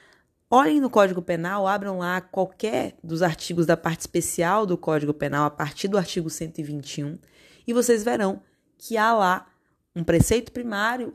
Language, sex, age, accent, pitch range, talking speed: Portuguese, female, 20-39, Brazilian, 165-215 Hz, 155 wpm